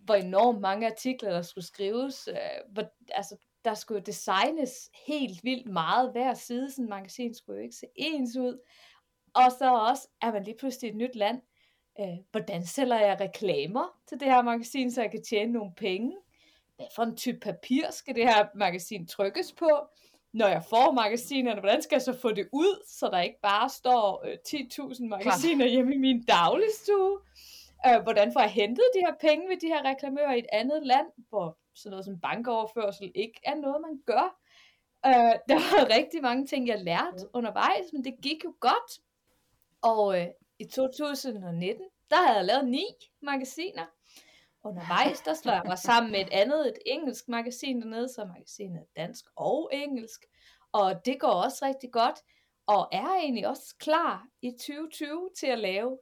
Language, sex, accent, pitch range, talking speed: Danish, female, native, 210-285 Hz, 180 wpm